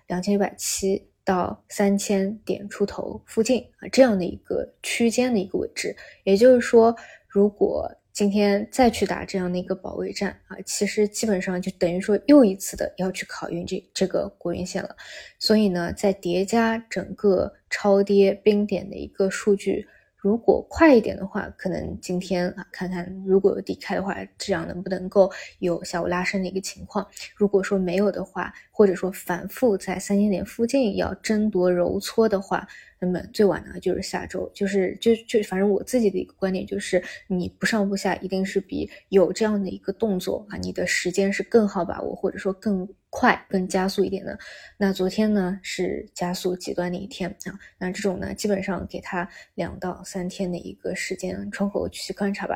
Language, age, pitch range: Chinese, 20-39, 185-210 Hz